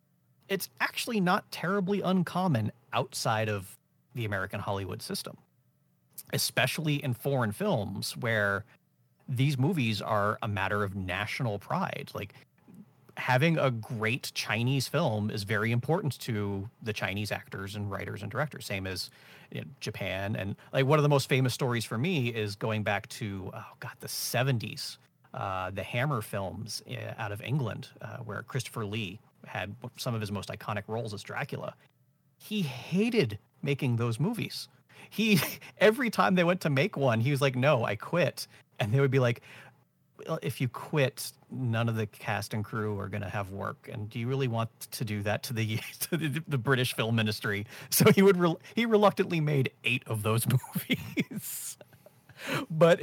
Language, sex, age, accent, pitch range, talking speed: English, male, 30-49, American, 110-145 Hz, 165 wpm